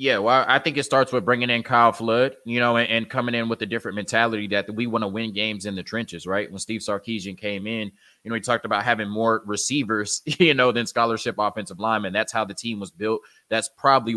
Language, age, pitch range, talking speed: English, 20-39, 100-115 Hz, 245 wpm